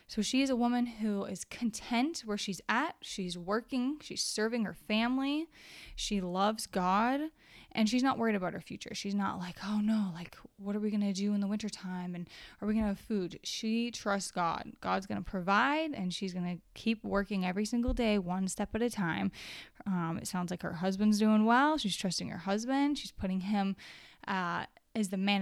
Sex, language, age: female, English, 20-39